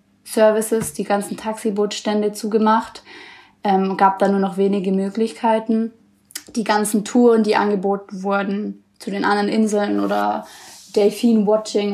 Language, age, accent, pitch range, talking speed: German, 20-39, German, 200-225 Hz, 120 wpm